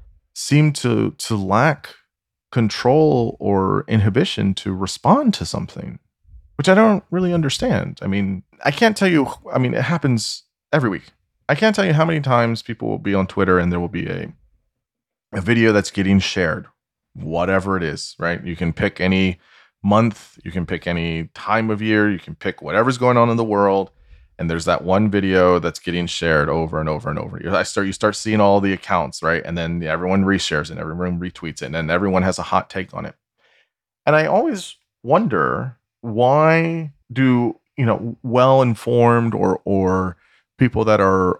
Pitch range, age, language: 90-120 Hz, 30-49, English